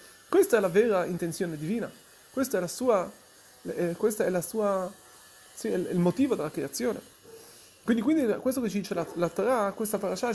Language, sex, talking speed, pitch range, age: Italian, male, 155 wpm, 175-245 Hz, 30-49